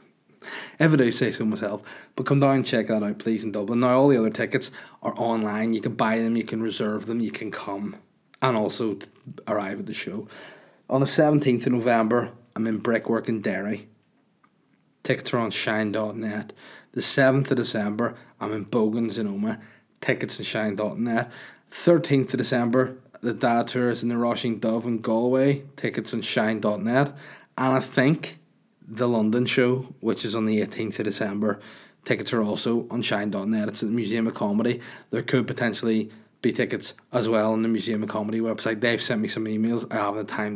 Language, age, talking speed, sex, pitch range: English, 30-49, 190 wpm, male, 110-125 Hz